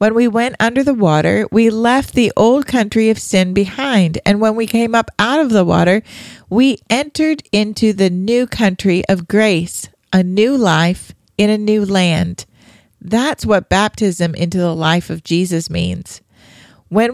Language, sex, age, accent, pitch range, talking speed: English, female, 40-59, American, 175-230 Hz, 170 wpm